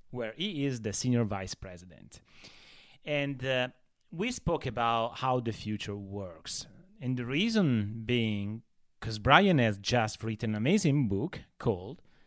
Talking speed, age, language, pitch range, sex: 140 wpm, 30-49, English, 105-135 Hz, male